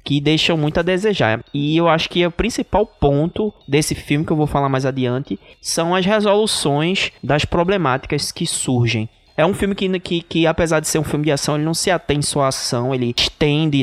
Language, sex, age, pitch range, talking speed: Portuguese, male, 20-39, 120-160 Hz, 215 wpm